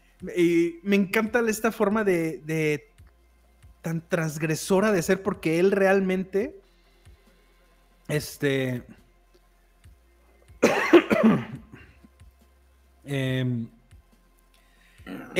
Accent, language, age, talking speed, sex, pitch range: Mexican, Spanish, 30-49, 60 wpm, male, 140-195 Hz